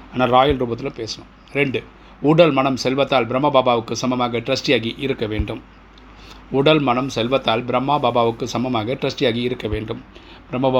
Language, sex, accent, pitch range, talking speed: Tamil, male, native, 115-135 Hz, 110 wpm